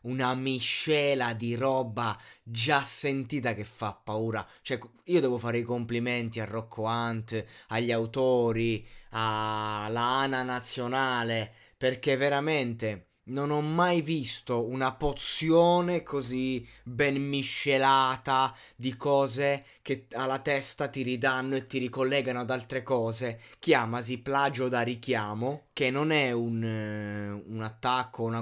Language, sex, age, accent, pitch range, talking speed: Italian, male, 20-39, native, 115-140 Hz, 125 wpm